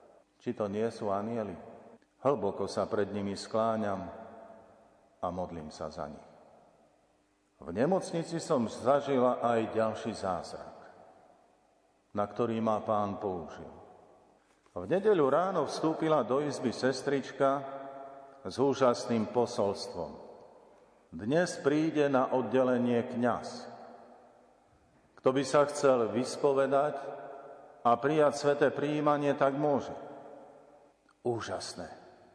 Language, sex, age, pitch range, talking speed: Slovak, male, 50-69, 115-140 Hz, 100 wpm